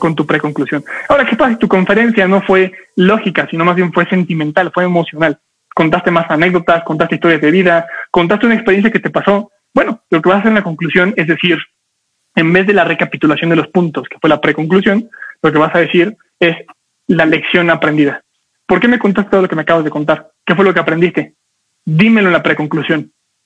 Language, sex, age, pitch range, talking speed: Spanish, male, 20-39, 160-195 Hz, 210 wpm